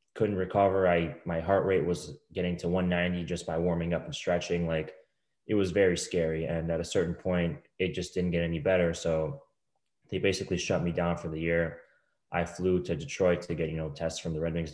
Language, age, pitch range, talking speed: English, 20-39, 85-95 Hz, 220 wpm